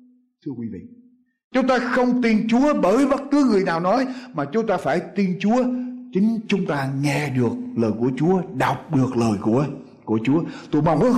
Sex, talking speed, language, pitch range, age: male, 195 wpm, Vietnamese, 170-235 Hz, 60-79